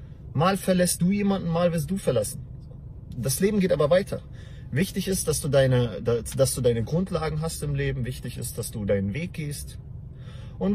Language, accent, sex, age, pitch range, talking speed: English, German, male, 30-49, 105-160 Hz, 190 wpm